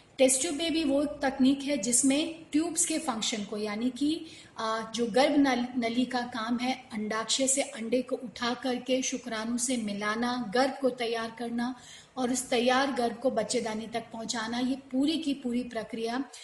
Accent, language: native, Hindi